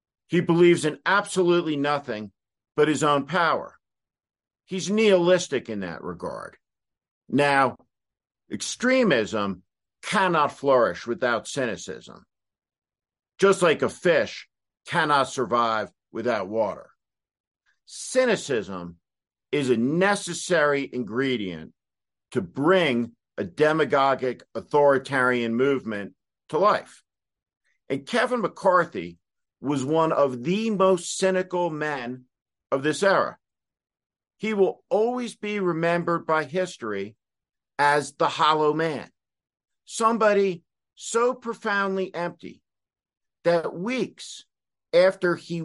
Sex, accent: male, American